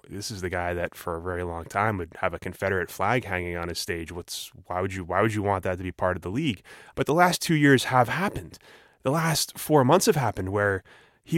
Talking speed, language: 260 wpm, English